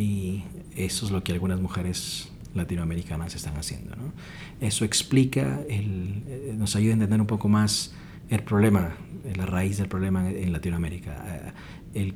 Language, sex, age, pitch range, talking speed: English, male, 40-59, 95-125 Hz, 140 wpm